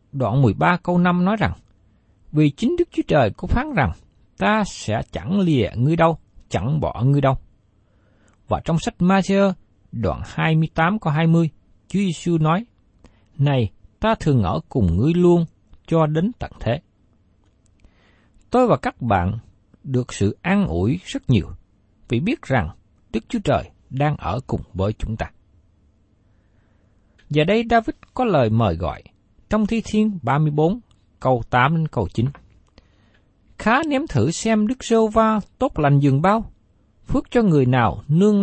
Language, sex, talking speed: Vietnamese, male, 155 wpm